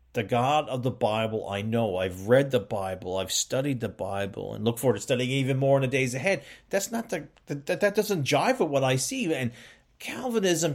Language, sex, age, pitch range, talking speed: English, male, 40-59, 115-160 Hz, 210 wpm